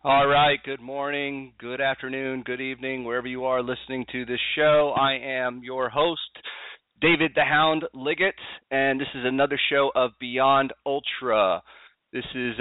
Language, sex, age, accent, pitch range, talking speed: English, male, 30-49, American, 110-140 Hz, 155 wpm